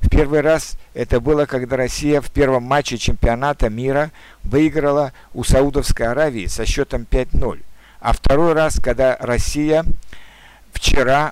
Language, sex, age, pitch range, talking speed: Russian, male, 60-79, 120-145 Hz, 125 wpm